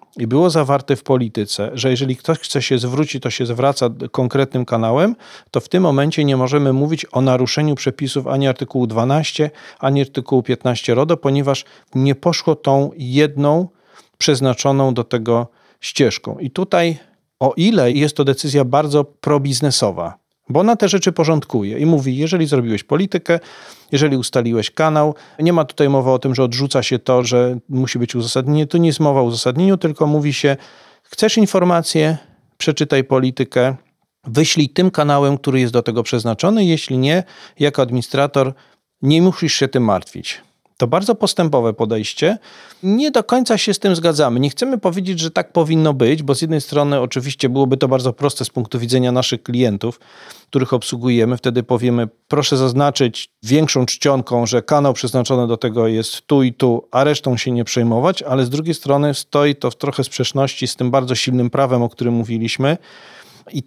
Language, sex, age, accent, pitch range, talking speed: Polish, male, 40-59, native, 125-150 Hz, 170 wpm